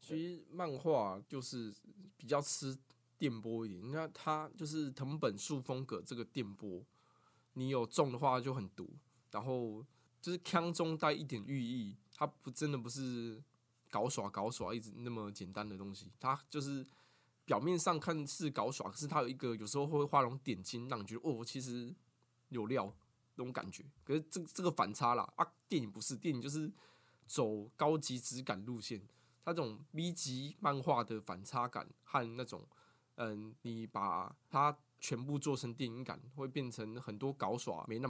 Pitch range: 115-150 Hz